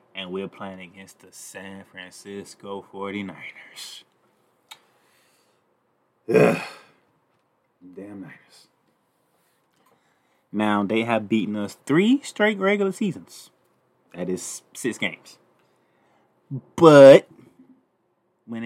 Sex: male